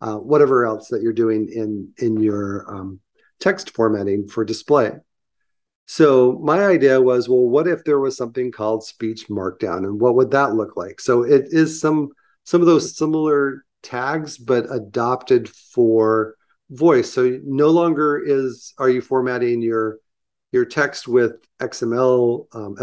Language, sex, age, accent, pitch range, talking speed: English, male, 40-59, American, 110-145 Hz, 155 wpm